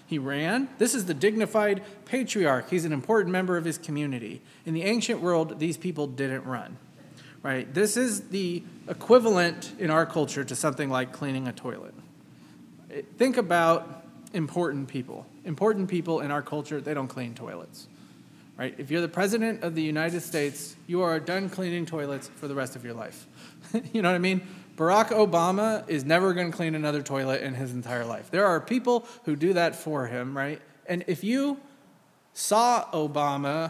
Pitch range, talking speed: 140-190 Hz, 180 wpm